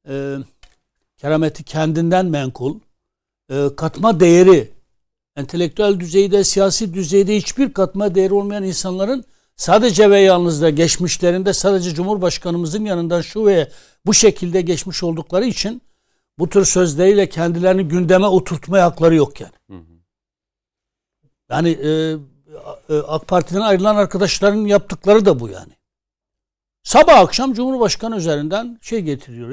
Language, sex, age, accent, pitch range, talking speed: Turkish, male, 60-79, native, 165-220 Hz, 110 wpm